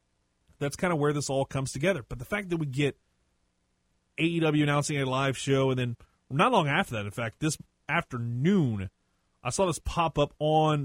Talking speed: 195 wpm